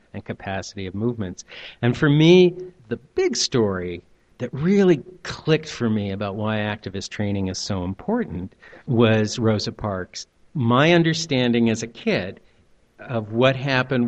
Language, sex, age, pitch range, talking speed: English, male, 50-69, 105-120 Hz, 140 wpm